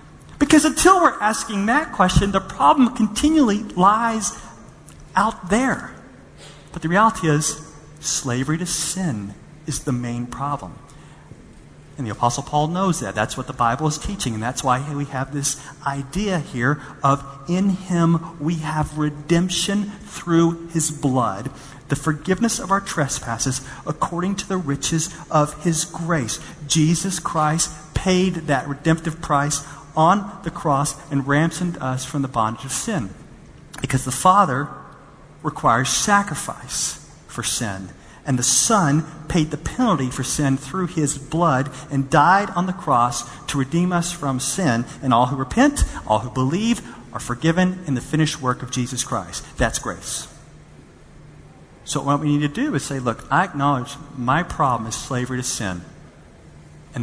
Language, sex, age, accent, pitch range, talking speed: English, male, 40-59, American, 135-175 Hz, 155 wpm